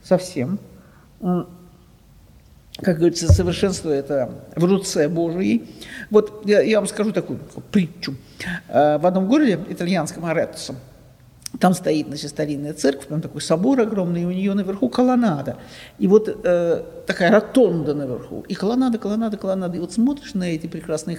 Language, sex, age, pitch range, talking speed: Russian, male, 60-79, 155-220 Hz, 140 wpm